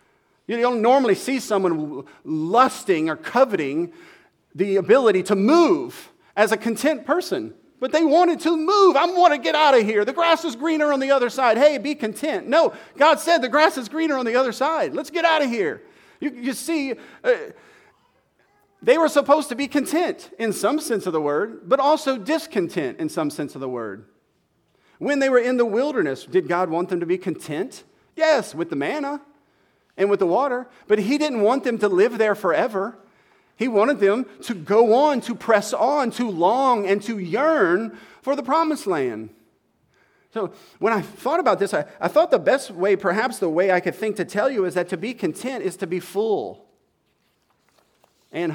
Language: English